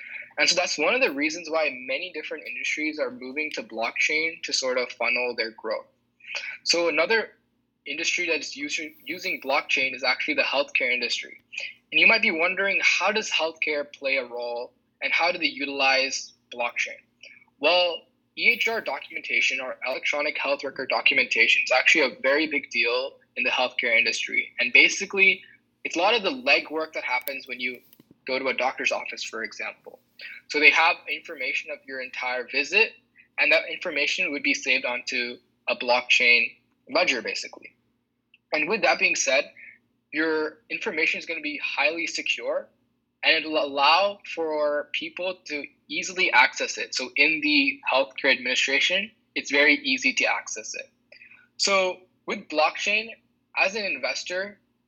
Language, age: English, 20-39